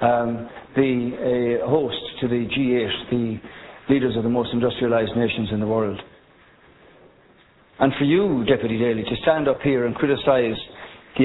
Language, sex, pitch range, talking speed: English, male, 125-160 Hz, 160 wpm